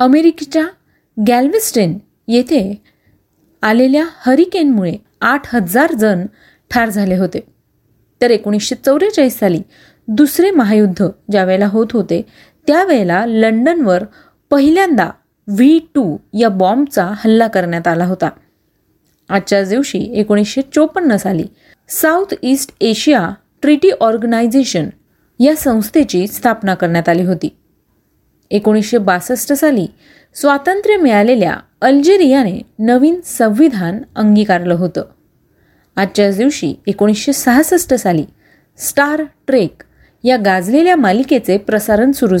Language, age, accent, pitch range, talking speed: Marathi, 30-49, native, 205-280 Hz, 95 wpm